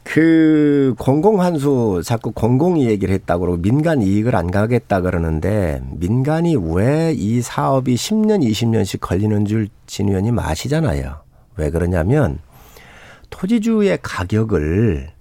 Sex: male